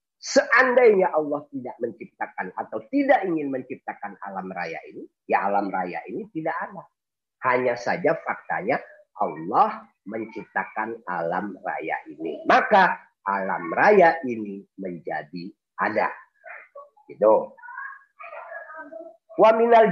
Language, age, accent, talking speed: Indonesian, 40-59, native, 95 wpm